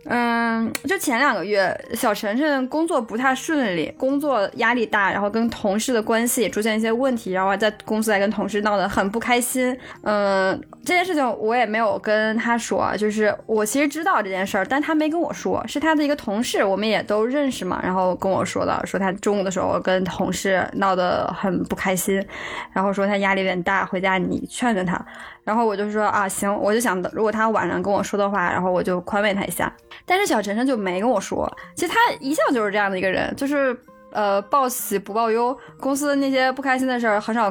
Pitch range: 200-260 Hz